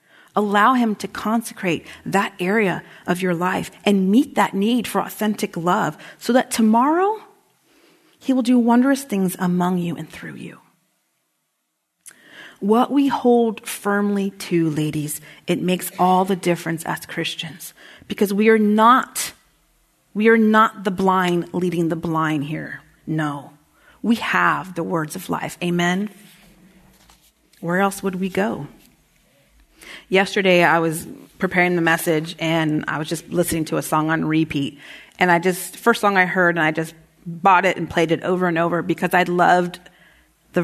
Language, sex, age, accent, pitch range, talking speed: English, female, 40-59, American, 165-210 Hz, 160 wpm